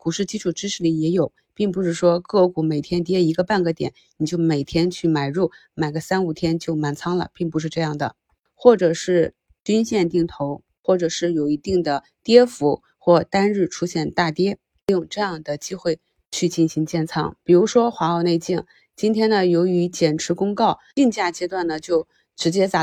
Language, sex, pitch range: Chinese, female, 165-195 Hz